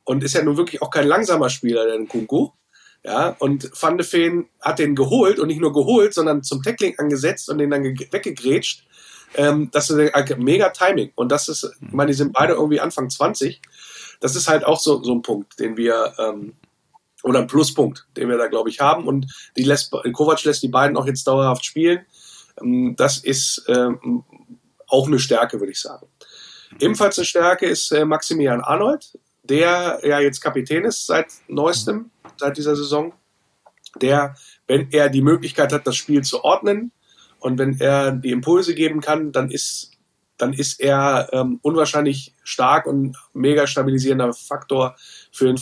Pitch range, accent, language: 135-160 Hz, German, German